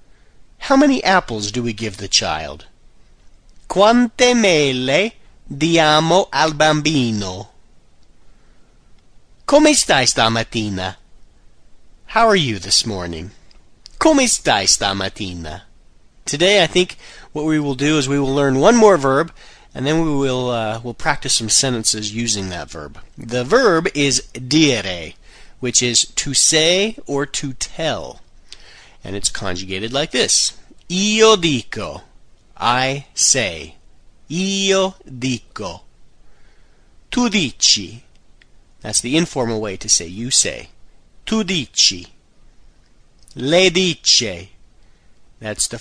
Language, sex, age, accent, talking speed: Italian, male, 40-59, American, 115 wpm